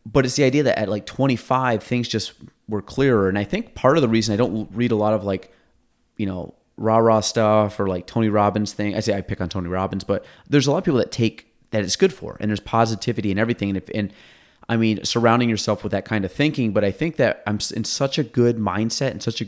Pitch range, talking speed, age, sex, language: 100-120 Hz, 260 wpm, 30-49, male, English